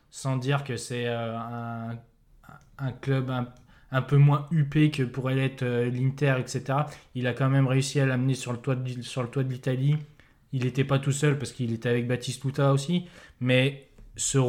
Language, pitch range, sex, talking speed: French, 125-140 Hz, male, 195 wpm